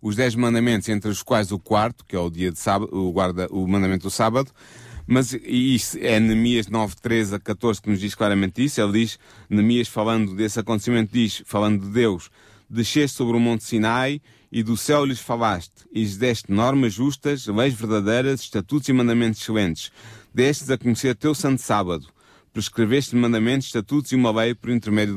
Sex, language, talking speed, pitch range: male, Portuguese, 185 wpm, 110-135 Hz